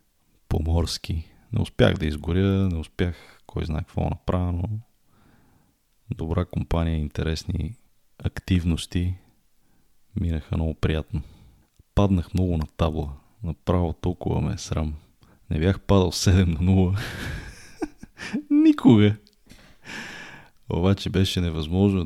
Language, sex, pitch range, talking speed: Bulgarian, male, 80-100 Hz, 105 wpm